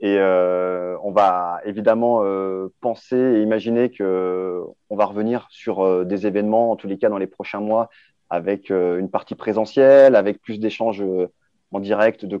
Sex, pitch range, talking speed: male, 100-115 Hz, 180 wpm